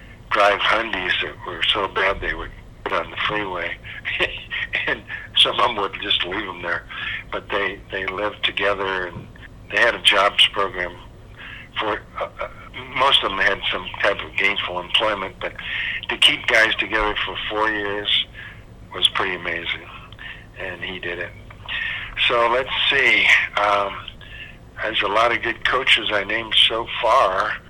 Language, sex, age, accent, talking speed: English, male, 60-79, American, 160 wpm